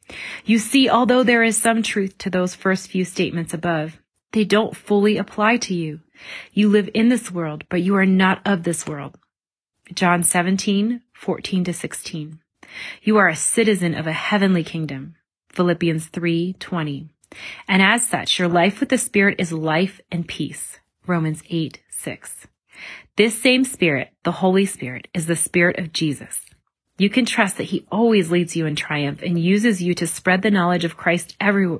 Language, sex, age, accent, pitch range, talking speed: English, female, 30-49, American, 170-205 Hz, 175 wpm